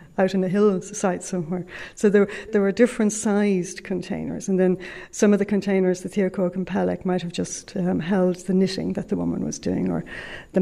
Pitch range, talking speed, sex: 190-220 Hz, 210 wpm, female